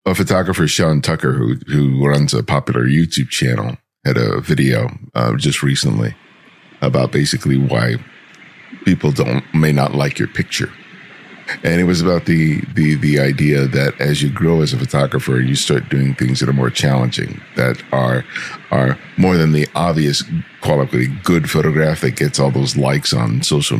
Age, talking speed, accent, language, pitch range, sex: 50-69, 170 wpm, American, English, 70-80 Hz, male